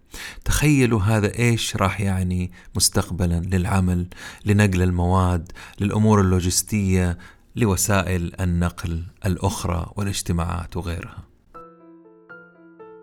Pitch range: 90-120 Hz